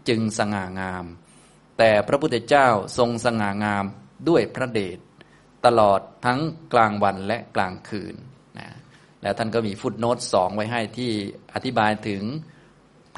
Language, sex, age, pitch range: Thai, male, 20-39, 105-125 Hz